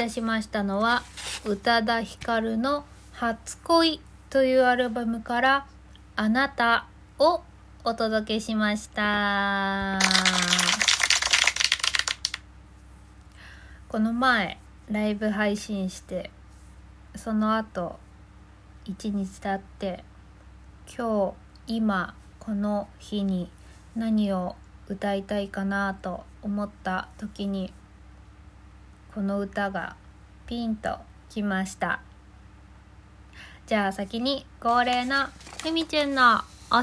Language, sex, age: Japanese, female, 20-39